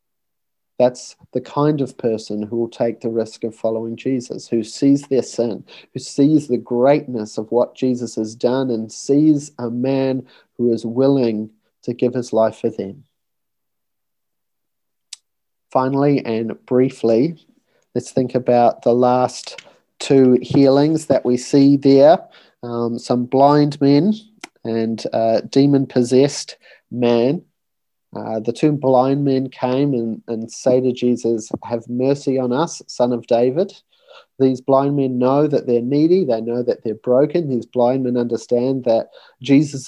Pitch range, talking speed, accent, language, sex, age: 120-135 Hz, 145 wpm, Australian, English, male, 40-59